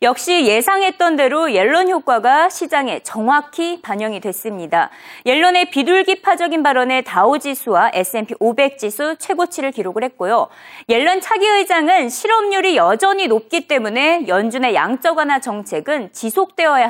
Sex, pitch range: female, 240-365 Hz